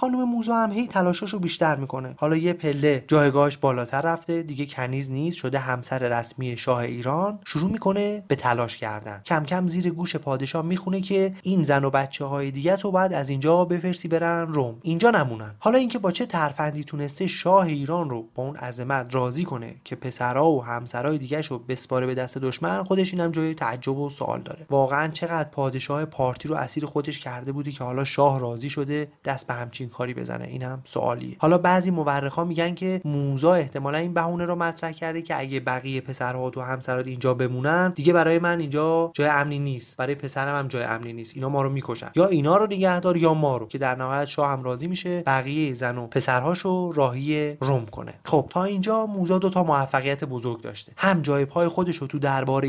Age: 30-49